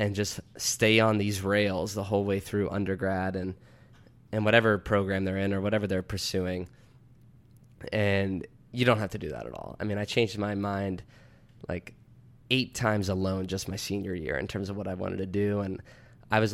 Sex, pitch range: male, 95-110 Hz